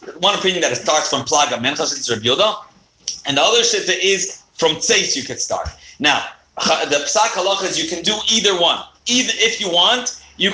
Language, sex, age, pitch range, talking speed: English, male, 40-59, 150-205 Hz, 175 wpm